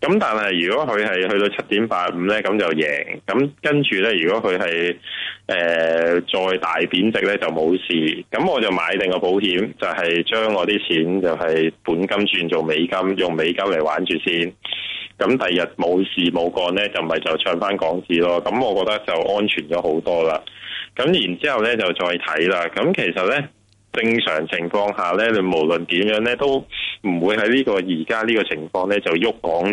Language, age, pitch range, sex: Chinese, 20-39, 85-105 Hz, male